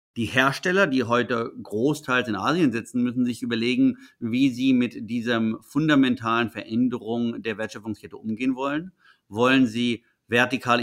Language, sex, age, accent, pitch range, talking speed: English, male, 50-69, German, 110-135 Hz, 135 wpm